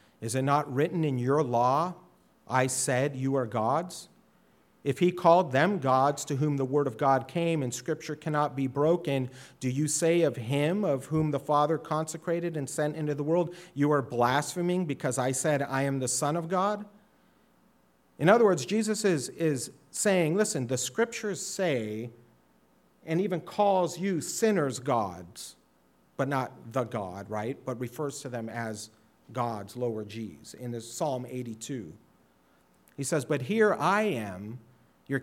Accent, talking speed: American, 165 wpm